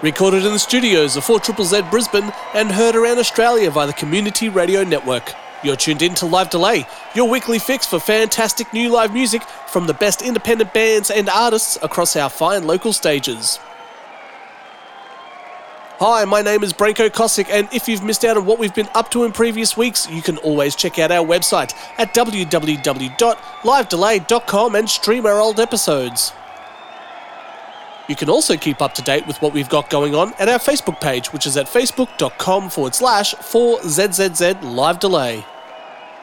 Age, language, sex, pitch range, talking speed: 30-49, English, male, 160-225 Hz, 165 wpm